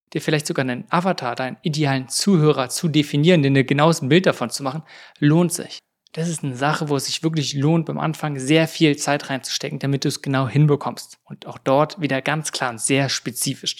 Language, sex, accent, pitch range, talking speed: German, male, German, 135-165 Hz, 210 wpm